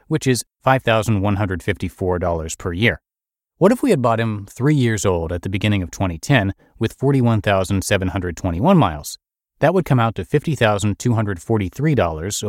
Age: 30-49